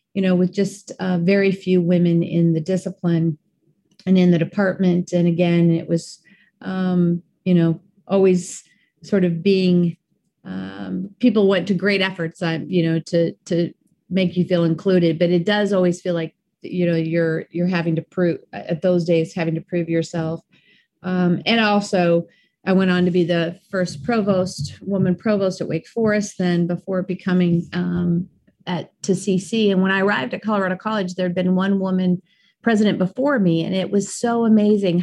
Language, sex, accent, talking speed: English, female, American, 175 wpm